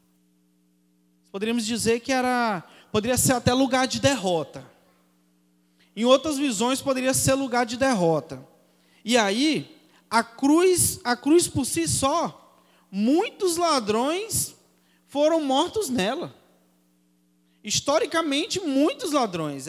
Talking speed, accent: 105 wpm, Brazilian